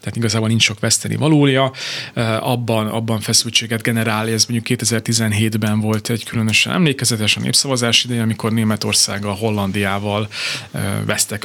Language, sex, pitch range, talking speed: Hungarian, male, 110-125 Hz, 125 wpm